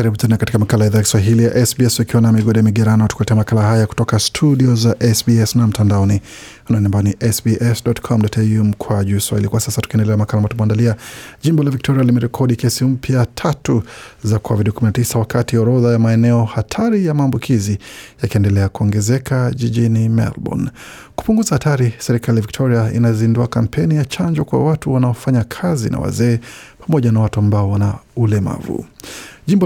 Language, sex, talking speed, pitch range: Swahili, male, 125 wpm, 110-130 Hz